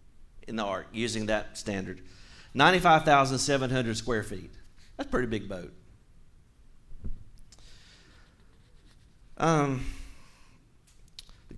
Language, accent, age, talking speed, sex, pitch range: English, American, 40-59, 85 wpm, male, 105-140 Hz